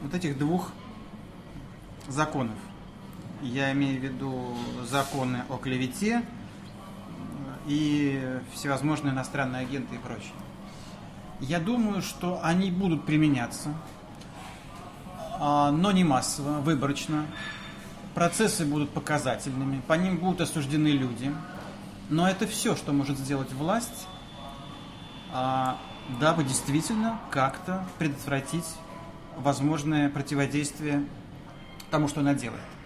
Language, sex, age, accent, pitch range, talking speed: Russian, male, 30-49, native, 135-165 Hz, 95 wpm